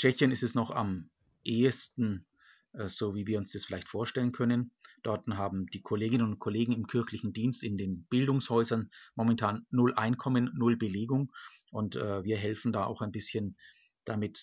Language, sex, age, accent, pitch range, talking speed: German, male, 50-69, German, 105-125 Hz, 160 wpm